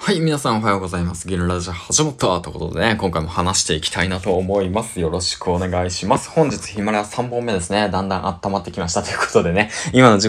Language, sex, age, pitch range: Japanese, male, 20-39, 85-115 Hz